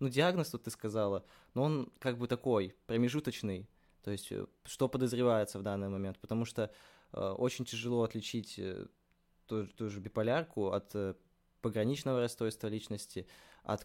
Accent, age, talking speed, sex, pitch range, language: native, 20-39, 145 wpm, male, 100-120 Hz, Russian